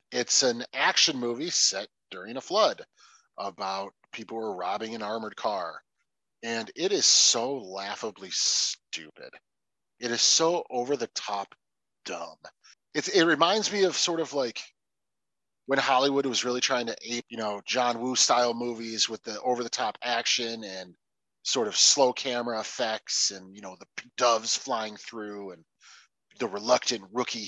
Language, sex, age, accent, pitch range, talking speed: English, male, 30-49, American, 115-160 Hz, 150 wpm